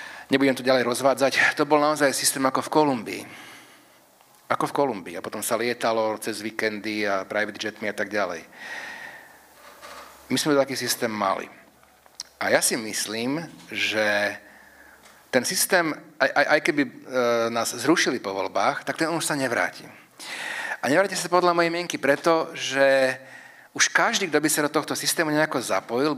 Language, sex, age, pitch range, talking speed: Slovak, male, 40-59, 115-150 Hz, 160 wpm